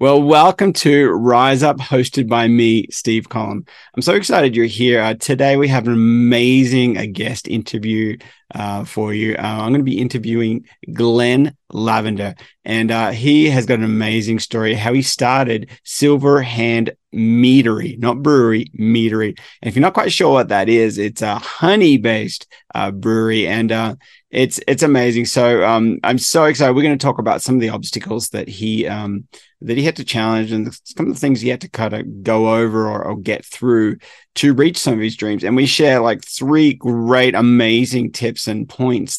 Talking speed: 190 wpm